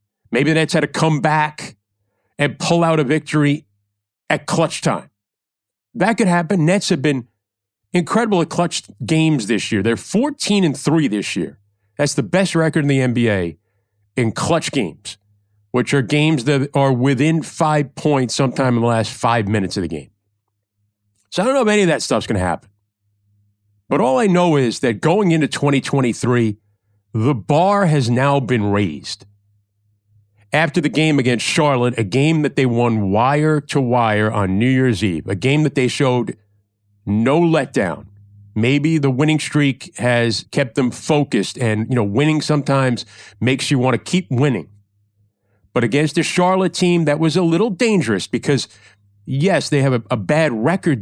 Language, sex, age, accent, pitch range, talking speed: English, male, 40-59, American, 105-155 Hz, 175 wpm